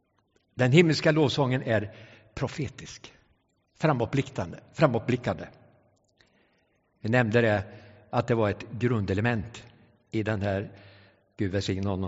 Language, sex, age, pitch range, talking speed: English, male, 60-79, 105-155 Hz, 95 wpm